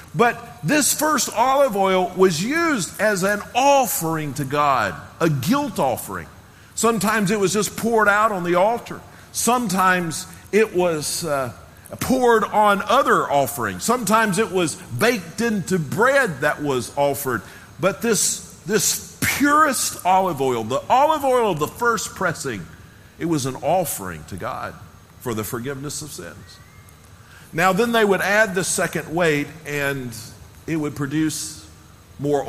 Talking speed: 145 wpm